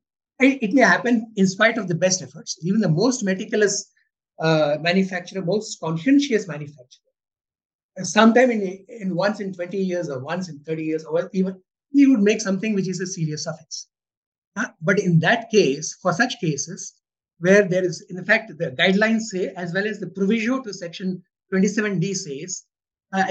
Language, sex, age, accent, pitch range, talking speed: English, male, 60-79, Indian, 175-215 Hz, 170 wpm